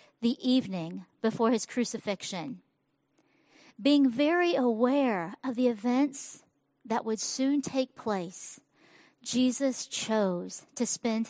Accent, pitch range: American, 205-250 Hz